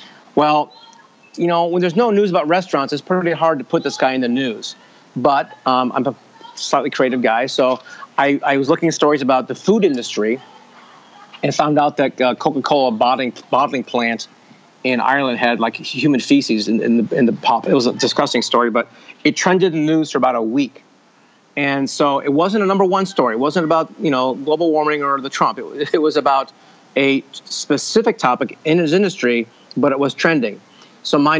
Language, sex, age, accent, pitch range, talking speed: English, male, 40-59, American, 125-155 Hz, 205 wpm